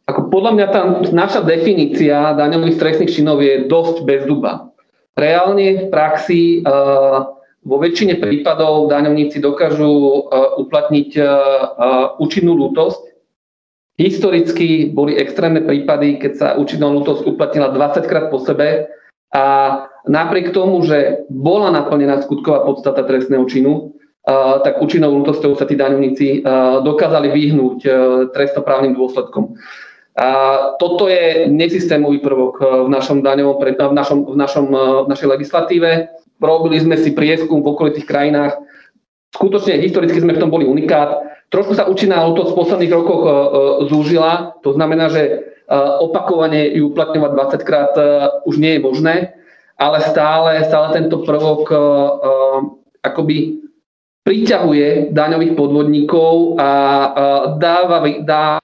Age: 40-59